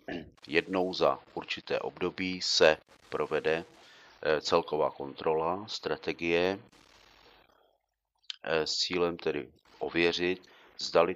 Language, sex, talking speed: Czech, male, 75 wpm